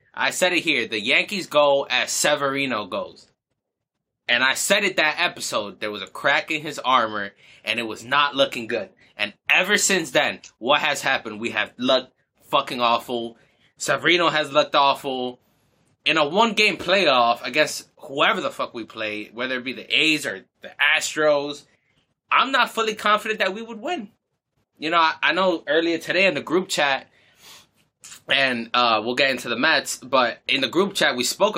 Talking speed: 185 wpm